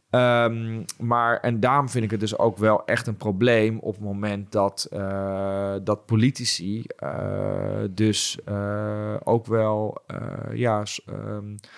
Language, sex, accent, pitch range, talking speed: Dutch, male, Dutch, 100-115 Hz, 145 wpm